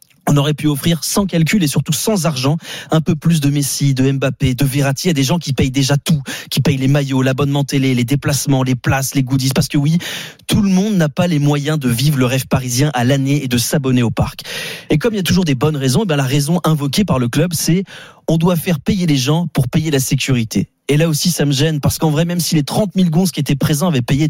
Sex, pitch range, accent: male, 130-160 Hz, French